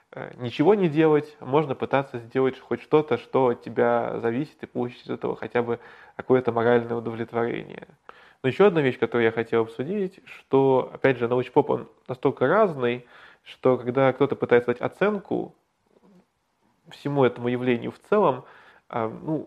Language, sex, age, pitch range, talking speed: Russian, male, 20-39, 120-135 Hz, 150 wpm